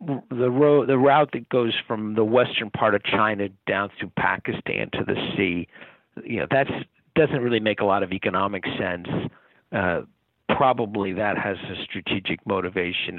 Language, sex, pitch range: English, male, 100-125 Hz